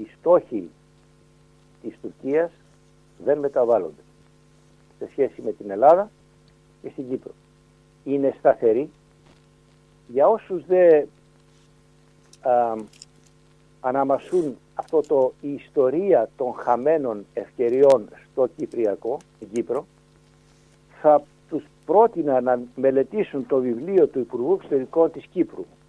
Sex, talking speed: male, 95 wpm